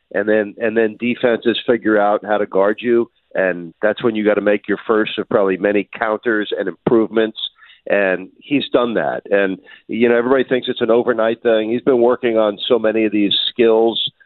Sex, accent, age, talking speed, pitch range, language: male, American, 50-69, 200 wpm, 105-120 Hz, English